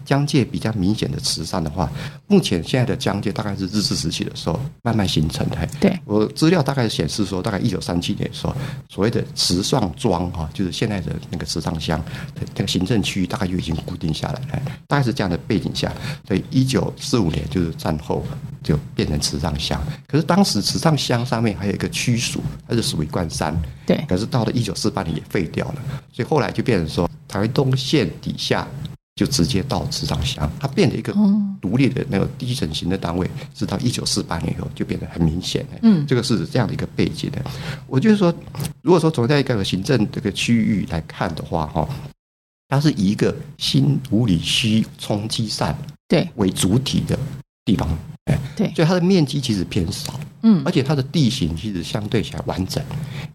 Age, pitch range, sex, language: 50-69, 105-150 Hz, male, Chinese